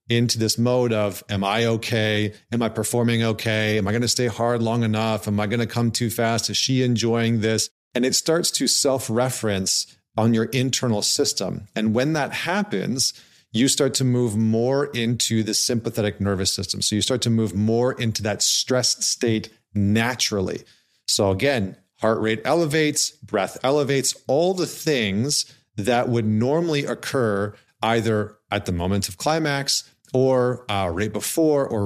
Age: 40-59